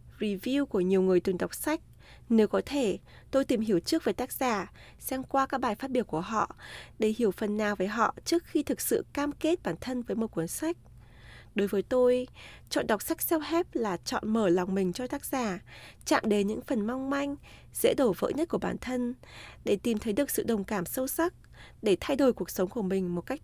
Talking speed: 230 wpm